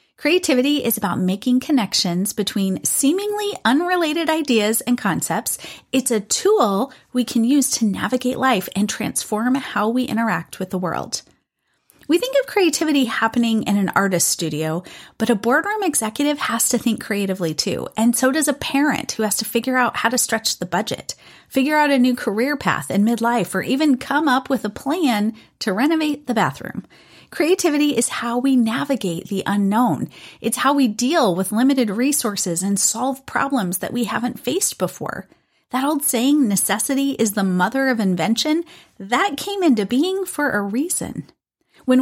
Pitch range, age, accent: 210-285 Hz, 30-49, American